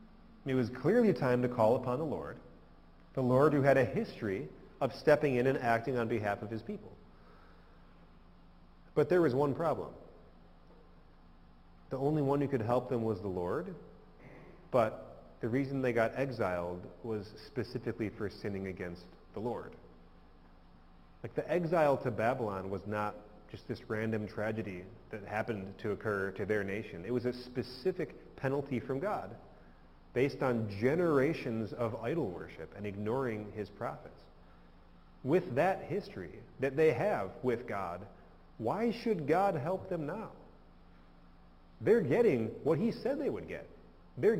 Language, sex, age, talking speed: English, male, 30-49, 150 wpm